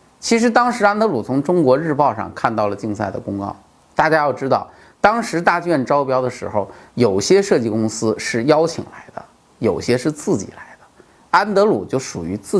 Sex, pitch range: male, 110-180 Hz